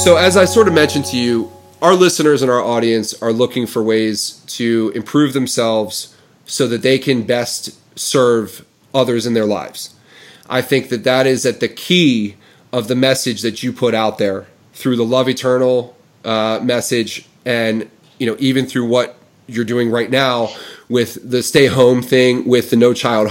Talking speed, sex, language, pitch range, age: 185 wpm, male, English, 115-140 Hz, 30-49